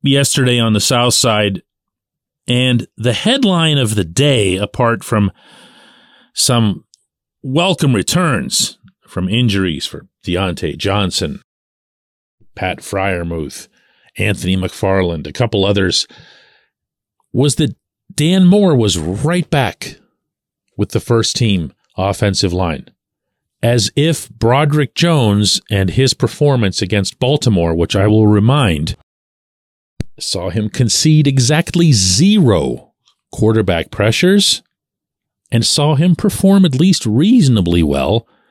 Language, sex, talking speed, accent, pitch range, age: English, male, 110 wpm, American, 100-150 Hz, 40-59